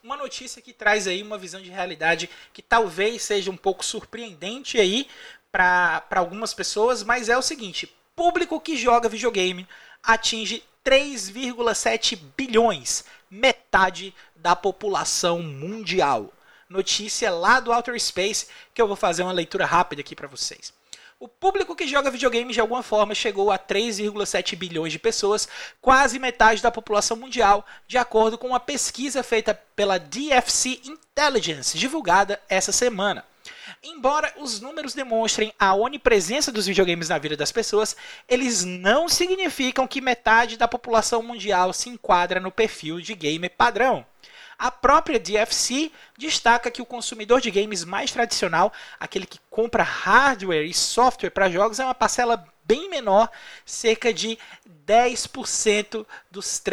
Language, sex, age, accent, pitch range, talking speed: Portuguese, male, 20-39, Brazilian, 195-250 Hz, 145 wpm